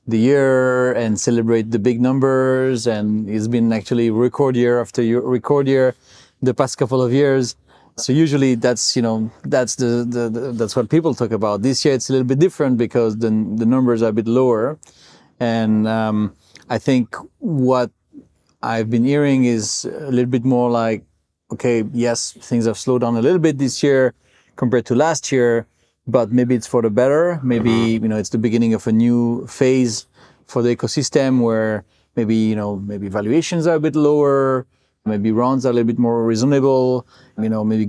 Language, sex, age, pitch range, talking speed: English, male, 30-49, 115-130 Hz, 190 wpm